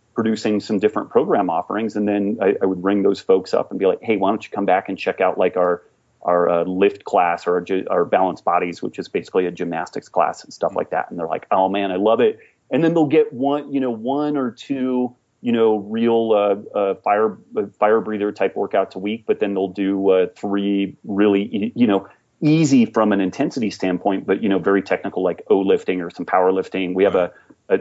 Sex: male